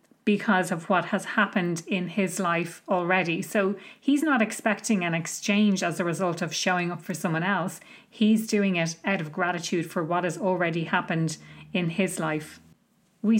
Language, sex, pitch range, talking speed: English, female, 180-215 Hz, 175 wpm